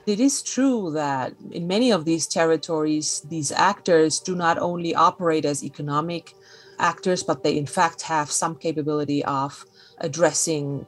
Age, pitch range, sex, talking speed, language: 30-49, 145-175 Hz, female, 150 wpm, English